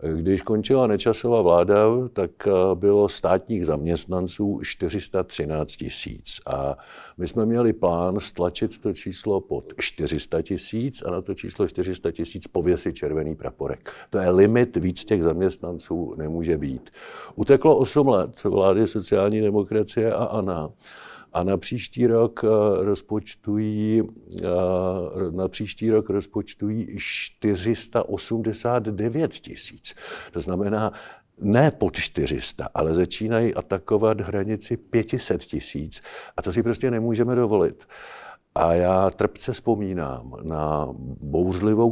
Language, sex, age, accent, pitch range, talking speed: Czech, male, 50-69, native, 90-115 Hz, 115 wpm